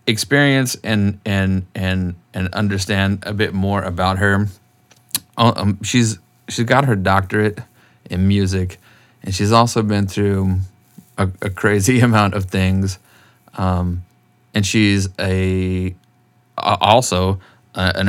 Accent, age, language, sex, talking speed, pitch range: American, 30-49, English, male, 125 wpm, 95-115 Hz